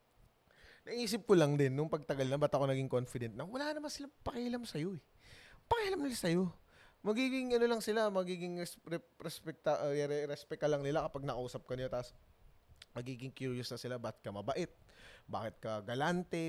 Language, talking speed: Filipino, 175 wpm